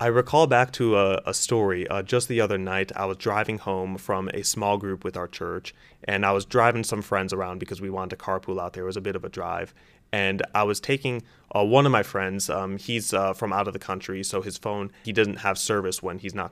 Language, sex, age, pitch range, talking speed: English, male, 30-49, 100-135 Hz, 260 wpm